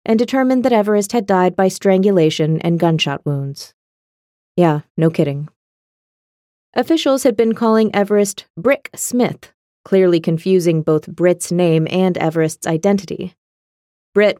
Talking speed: 125 wpm